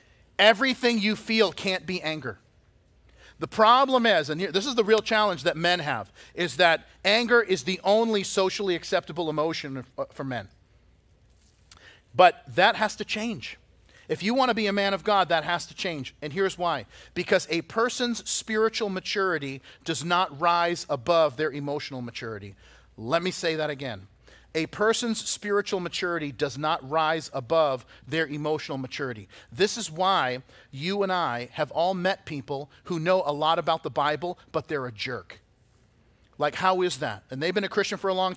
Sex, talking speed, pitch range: male, 175 wpm, 140-190 Hz